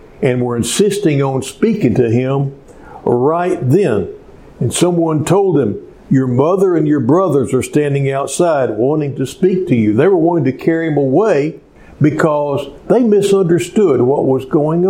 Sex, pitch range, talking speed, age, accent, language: male, 130-165 Hz, 155 wpm, 60-79, American, English